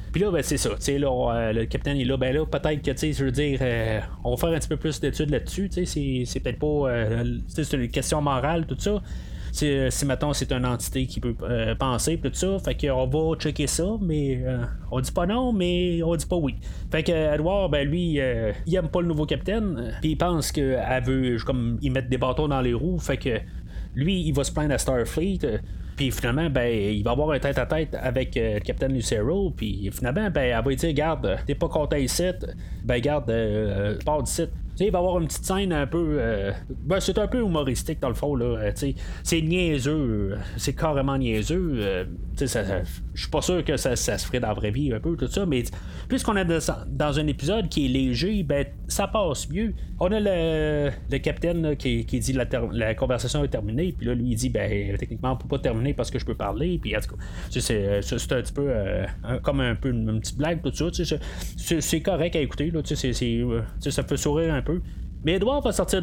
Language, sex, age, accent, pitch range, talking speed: French, male, 30-49, Canadian, 120-160 Hz, 255 wpm